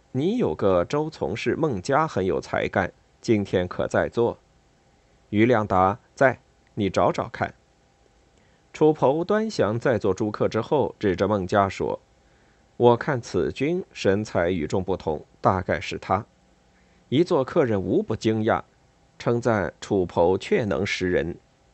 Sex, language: male, Chinese